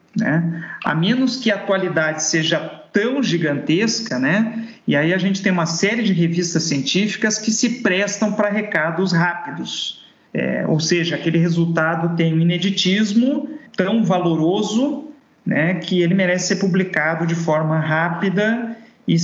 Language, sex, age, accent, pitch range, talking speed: Portuguese, male, 50-69, Brazilian, 165-205 Hz, 140 wpm